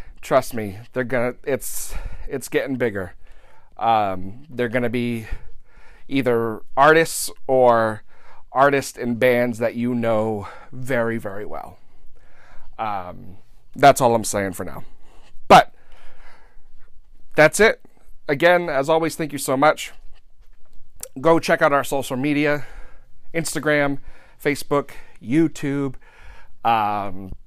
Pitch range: 110-165 Hz